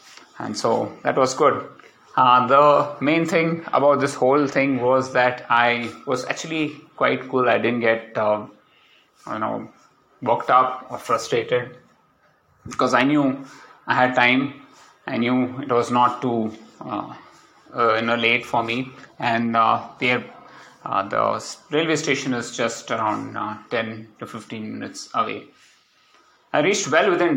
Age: 30-49